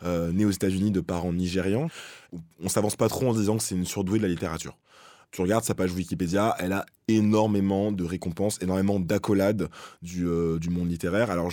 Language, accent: French, French